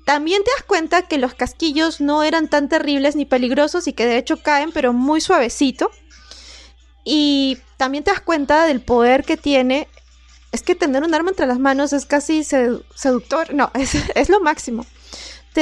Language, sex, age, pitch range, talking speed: Spanish, female, 20-39, 260-315 Hz, 180 wpm